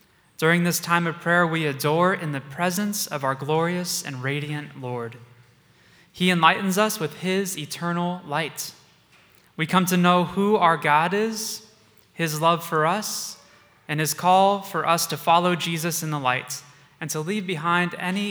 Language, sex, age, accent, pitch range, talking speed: English, male, 20-39, American, 140-175 Hz, 165 wpm